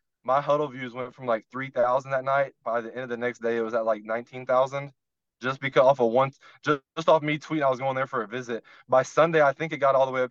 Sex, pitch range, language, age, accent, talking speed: male, 120-155 Hz, English, 20-39, American, 280 wpm